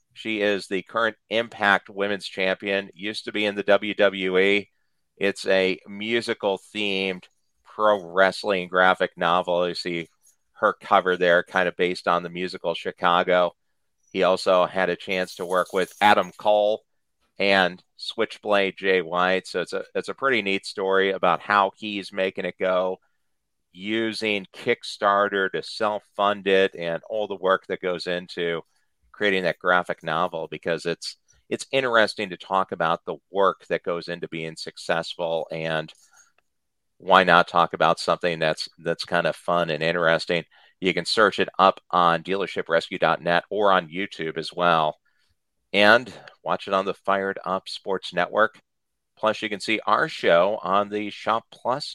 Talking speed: 155 wpm